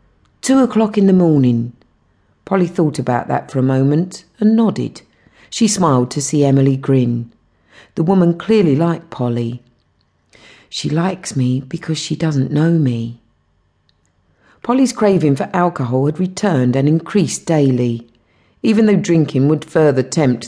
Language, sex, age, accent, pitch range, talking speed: English, female, 50-69, British, 125-175 Hz, 140 wpm